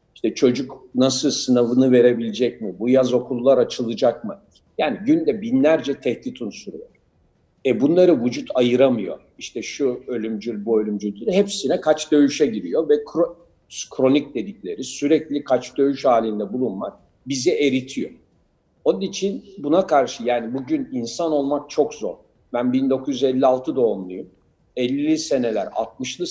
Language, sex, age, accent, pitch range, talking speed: Turkish, male, 60-79, native, 120-205 Hz, 125 wpm